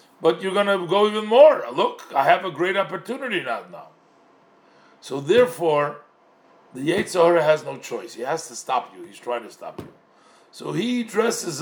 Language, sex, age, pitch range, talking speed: English, male, 50-69, 140-215 Hz, 175 wpm